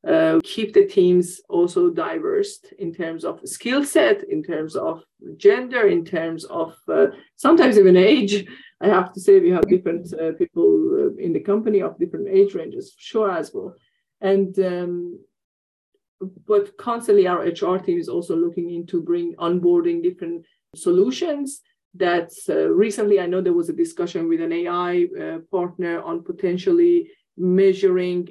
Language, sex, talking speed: English, female, 155 wpm